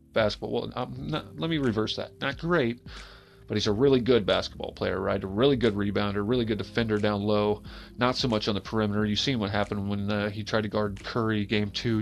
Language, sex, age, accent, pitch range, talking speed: English, male, 30-49, American, 105-125 Hz, 230 wpm